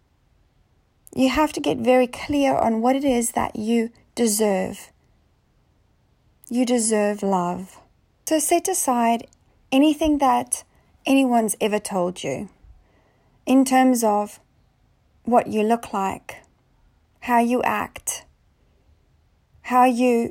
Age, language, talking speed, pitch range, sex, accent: 40-59, English, 110 wpm, 205-245 Hz, female, Australian